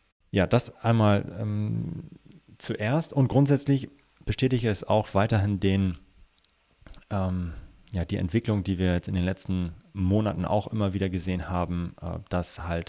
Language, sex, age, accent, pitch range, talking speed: German, male, 30-49, German, 90-110 Hz, 135 wpm